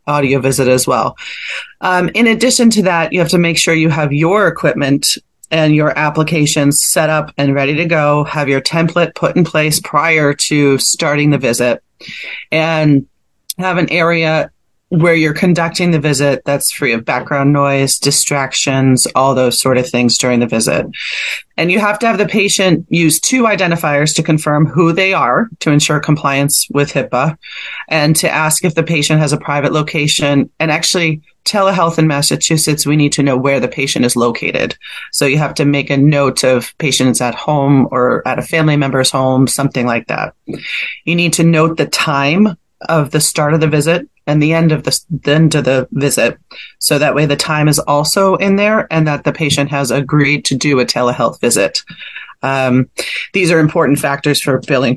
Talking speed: 190 wpm